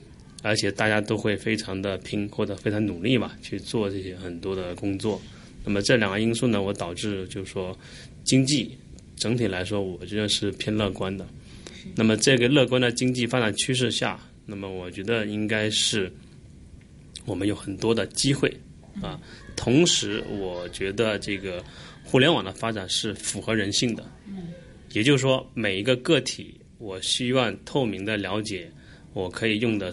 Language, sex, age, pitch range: Chinese, male, 20-39, 95-115 Hz